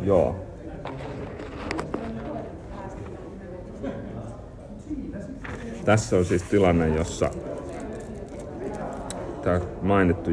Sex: male